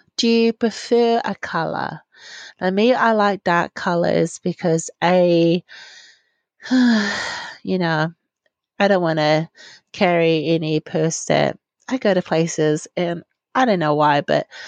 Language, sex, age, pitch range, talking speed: English, female, 30-49, 160-225 Hz, 135 wpm